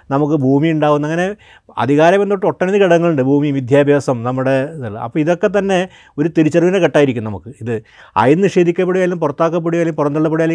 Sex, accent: male, native